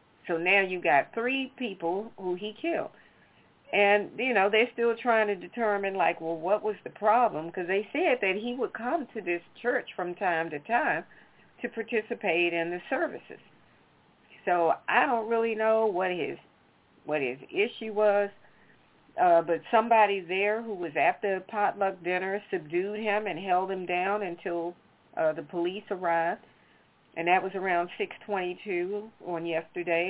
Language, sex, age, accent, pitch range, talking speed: English, female, 40-59, American, 175-210 Hz, 160 wpm